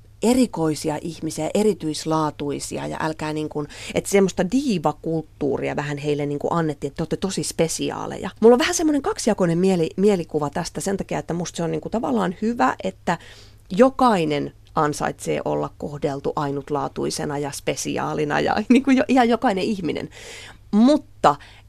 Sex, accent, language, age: female, native, Finnish, 30-49